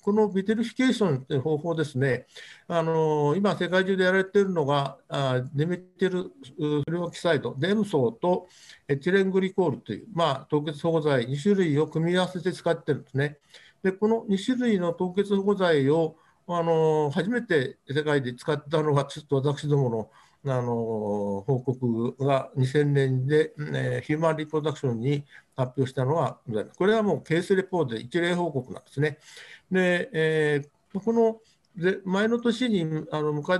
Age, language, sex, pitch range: 60-79, Japanese, male, 140-190 Hz